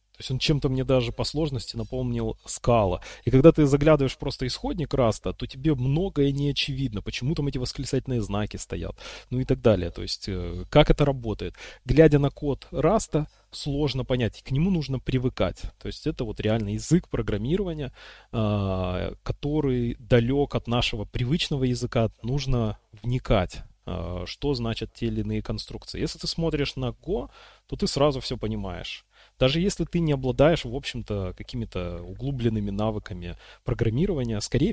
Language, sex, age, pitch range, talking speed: Russian, male, 30-49, 105-140 Hz, 155 wpm